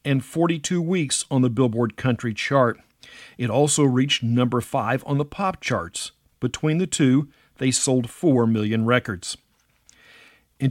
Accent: American